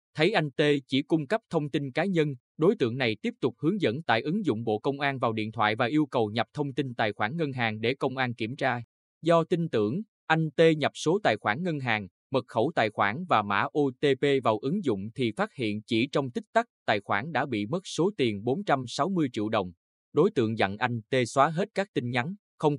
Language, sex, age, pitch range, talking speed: Vietnamese, male, 20-39, 115-155 Hz, 235 wpm